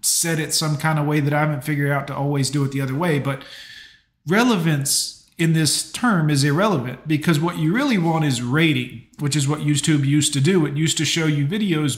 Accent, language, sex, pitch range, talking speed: American, English, male, 140-170 Hz, 225 wpm